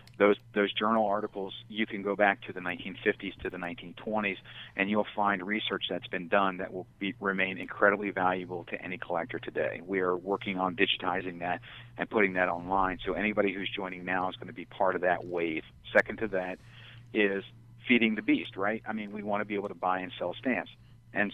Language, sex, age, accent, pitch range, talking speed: English, male, 40-59, American, 95-115 Hz, 210 wpm